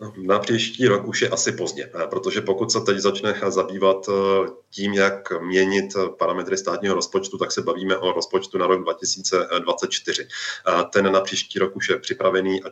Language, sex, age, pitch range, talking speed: Czech, male, 30-49, 95-110 Hz, 165 wpm